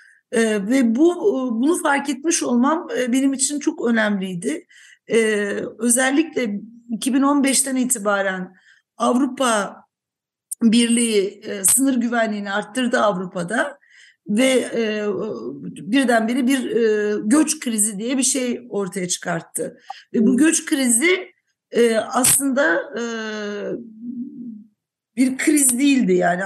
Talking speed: 105 wpm